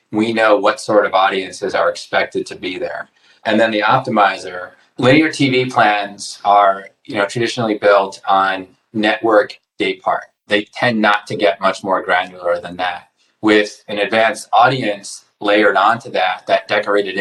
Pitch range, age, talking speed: 95-110 Hz, 30-49, 155 wpm